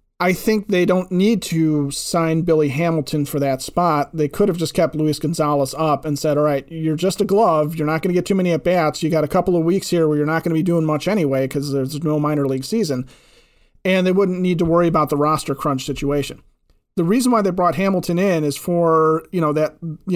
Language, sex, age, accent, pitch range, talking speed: English, male, 40-59, American, 150-180 Hz, 245 wpm